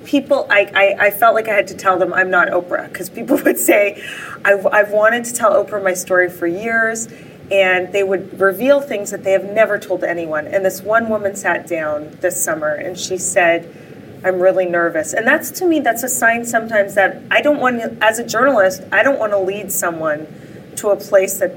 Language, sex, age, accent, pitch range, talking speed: English, female, 30-49, American, 180-220 Hz, 220 wpm